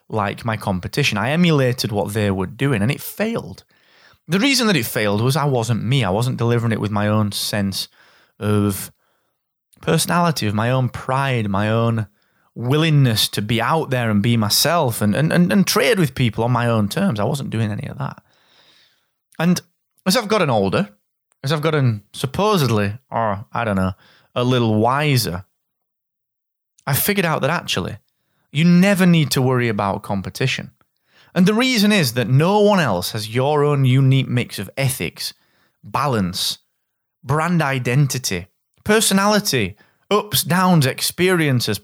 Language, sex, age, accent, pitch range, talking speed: English, male, 20-39, British, 110-160 Hz, 160 wpm